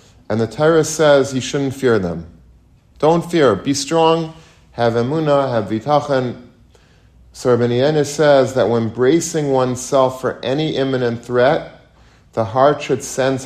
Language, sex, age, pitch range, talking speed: English, male, 40-59, 105-130 Hz, 140 wpm